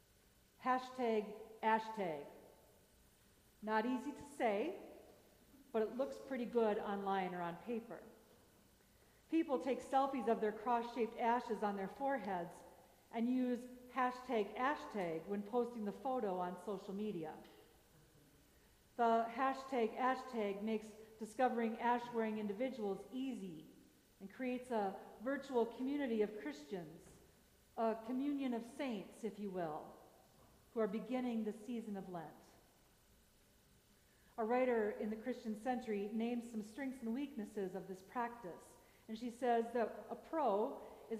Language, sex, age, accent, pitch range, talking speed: English, female, 50-69, American, 205-250 Hz, 125 wpm